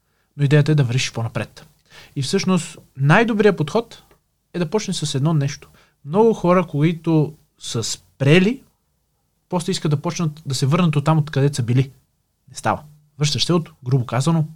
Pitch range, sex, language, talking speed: 135-180 Hz, male, Bulgarian, 170 wpm